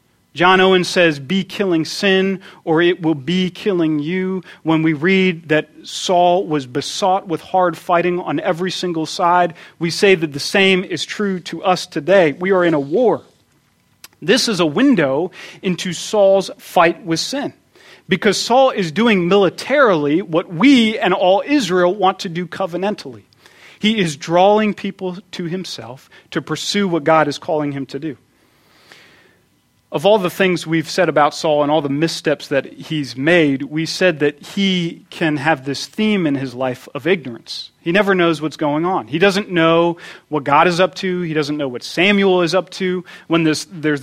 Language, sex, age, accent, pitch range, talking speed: English, male, 40-59, American, 155-190 Hz, 180 wpm